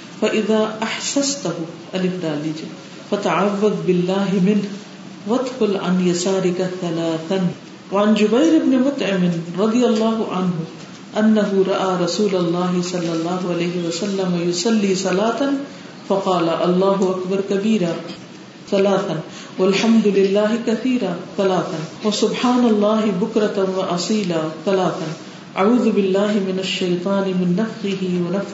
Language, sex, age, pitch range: Urdu, female, 40-59, 175-215 Hz